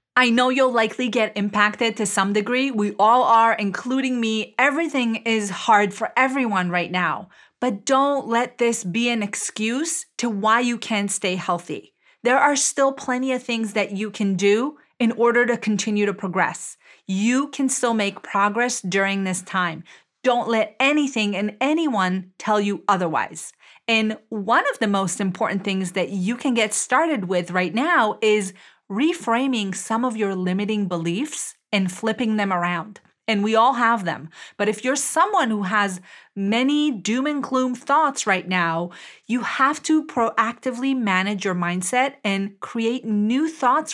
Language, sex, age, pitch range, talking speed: English, female, 30-49, 200-255 Hz, 165 wpm